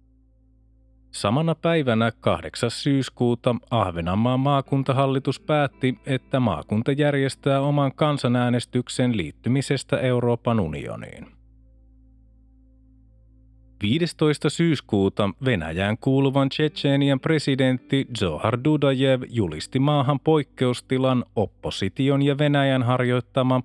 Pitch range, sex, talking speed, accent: 115-140 Hz, male, 75 wpm, native